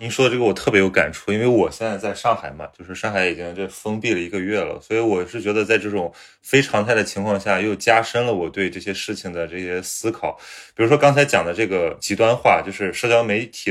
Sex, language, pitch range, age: male, Chinese, 100-125 Hz, 20-39